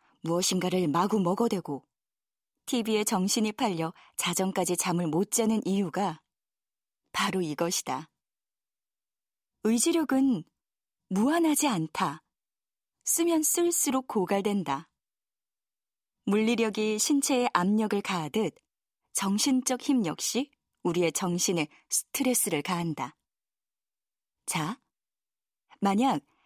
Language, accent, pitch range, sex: Korean, native, 180-250 Hz, female